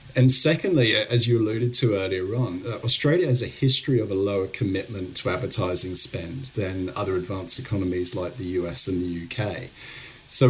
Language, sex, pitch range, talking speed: English, male, 100-125 Hz, 170 wpm